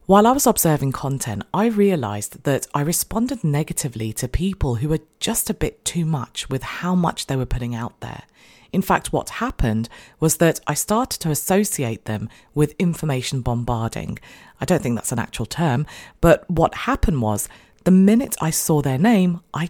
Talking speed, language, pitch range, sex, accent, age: 185 wpm, English, 125-185 Hz, female, British, 40-59